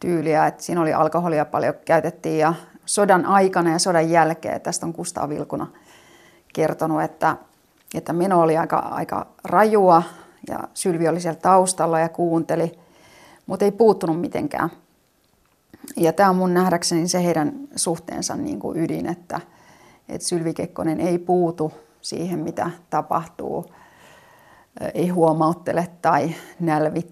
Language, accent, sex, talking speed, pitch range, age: Finnish, native, female, 135 wpm, 160-185 Hz, 30-49